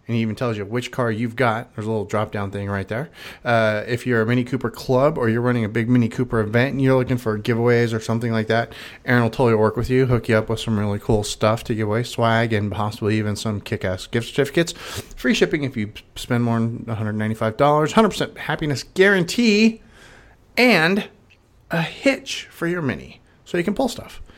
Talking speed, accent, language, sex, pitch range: 215 wpm, American, English, male, 110-145 Hz